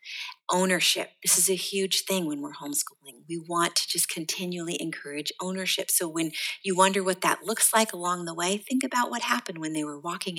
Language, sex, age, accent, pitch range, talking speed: English, female, 40-59, American, 175-225 Hz, 200 wpm